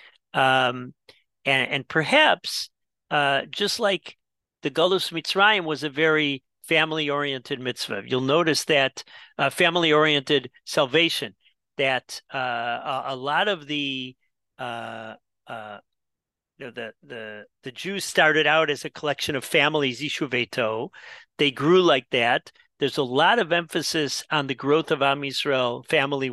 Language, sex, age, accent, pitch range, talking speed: English, male, 40-59, American, 130-160 Hz, 140 wpm